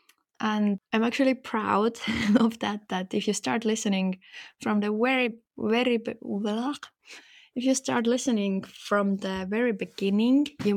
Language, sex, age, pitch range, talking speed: English, female, 20-39, 190-230 Hz, 135 wpm